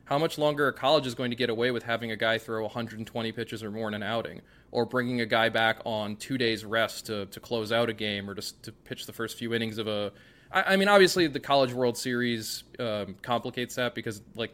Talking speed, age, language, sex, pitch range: 250 wpm, 20-39, English, male, 105-125 Hz